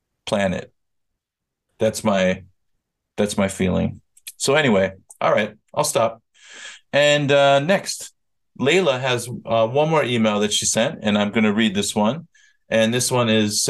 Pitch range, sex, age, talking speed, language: 110-140 Hz, male, 40-59, 155 wpm, English